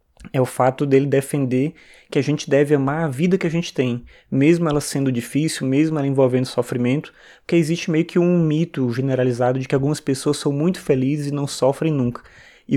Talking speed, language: 200 wpm, Portuguese